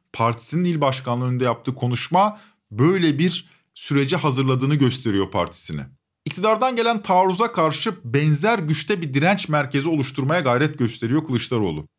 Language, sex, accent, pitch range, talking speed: Turkish, male, native, 130-190 Hz, 125 wpm